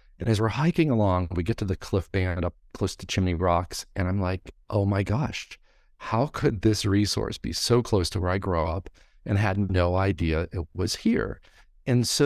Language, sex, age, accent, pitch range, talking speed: English, male, 50-69, American, 90-115 Hz, 210 wpm